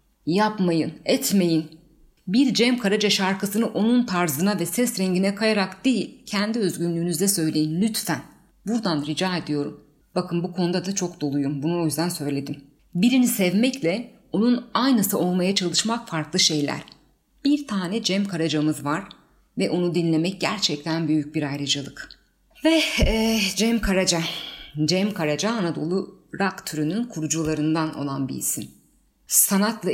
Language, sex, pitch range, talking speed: Turkish, female, 155-215 Hz, 130 wpm